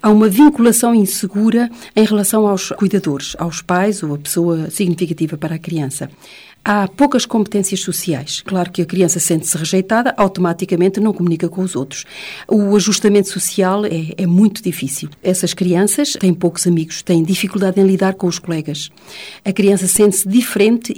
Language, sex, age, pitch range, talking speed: Portuguese, female, 40-59, 170-210 Hz, 160 wpm